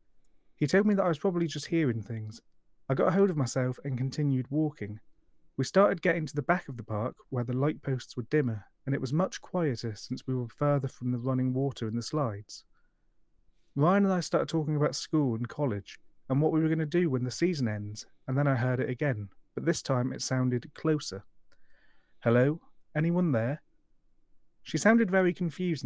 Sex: male